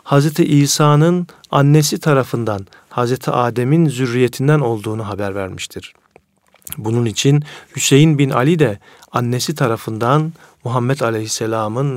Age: 40-59